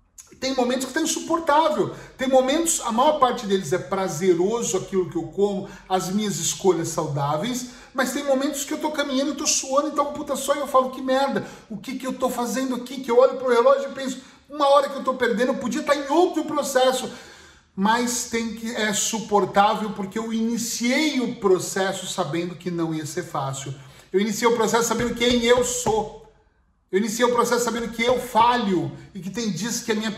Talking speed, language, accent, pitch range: 215 wpm, Portuguese, Brazilian, 195-255 Hz